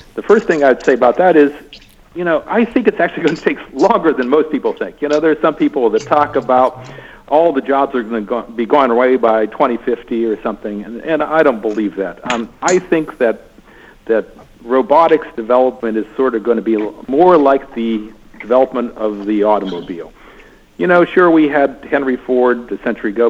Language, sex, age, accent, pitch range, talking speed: English, male, 60-79, American, 115-155 Hz, 210 wpm